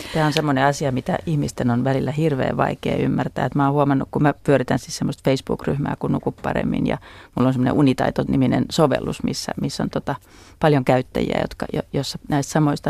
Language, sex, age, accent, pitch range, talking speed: Finnish, female, 30-49, native, 140-180 Hz, 190 wpm